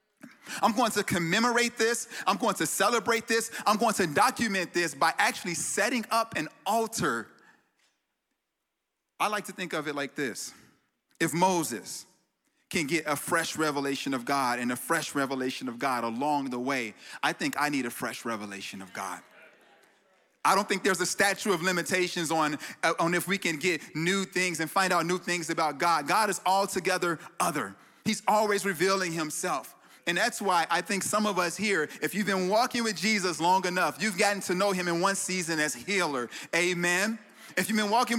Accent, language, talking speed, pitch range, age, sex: American, English, 185 wpm, 170-220 Hz, 30-49, male